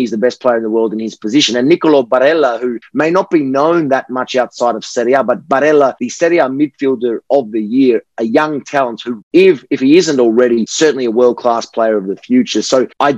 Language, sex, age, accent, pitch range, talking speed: English, male, 30-49, Australian, 115-140 Hz, 235 wpm